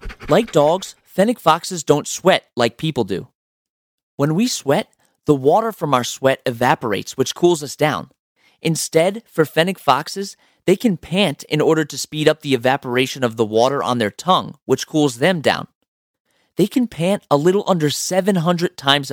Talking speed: 170 wpm